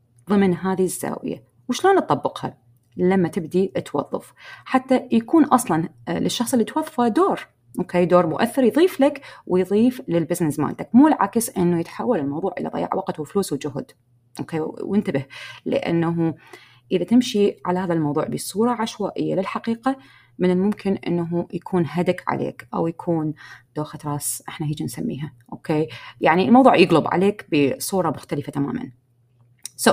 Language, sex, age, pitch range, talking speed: Arabic, female, 30-49, 150-220 Hz, 130 wpm